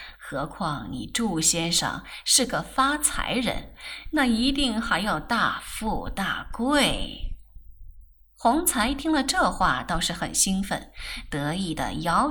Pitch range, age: 185-285 Hz, 20-39